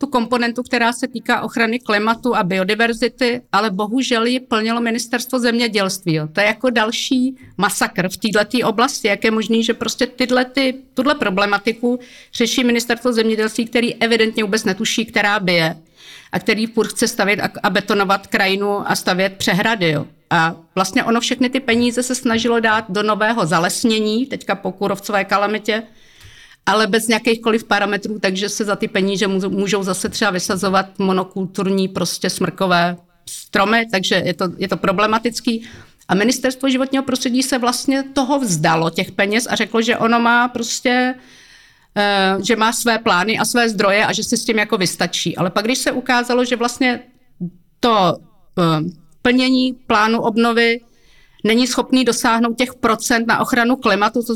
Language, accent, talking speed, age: Czech, native, 155 wpm, 50-69